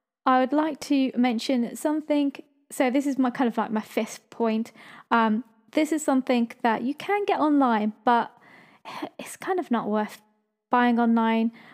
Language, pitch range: English, 225-275 Hz